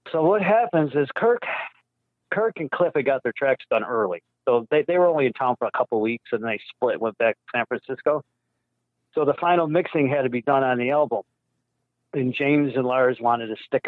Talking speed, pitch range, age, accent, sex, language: 225 wpm, 120-155 Hz, 50-69, American, male, English